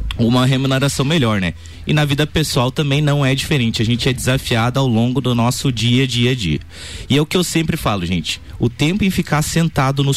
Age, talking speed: 20-39, 225 wpm